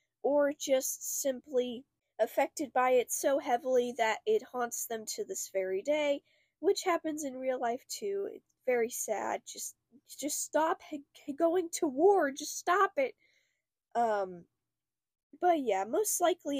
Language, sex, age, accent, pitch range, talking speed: English, female, 10-29, American, 205-310 Hz, 140 wpm